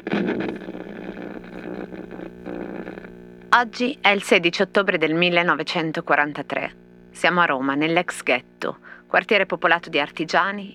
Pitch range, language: 130-200 Hz, Italian